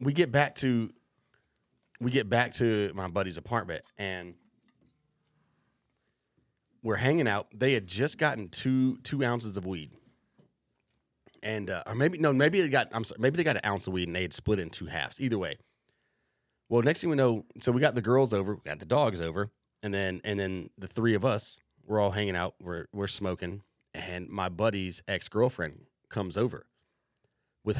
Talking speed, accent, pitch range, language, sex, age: 195 wpm, American, 95-125 Hz, English, male, 30-49